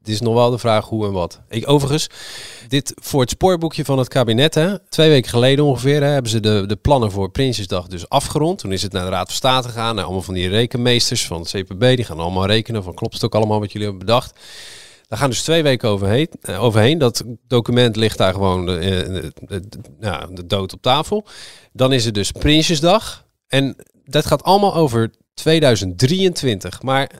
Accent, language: Dutch, Dutch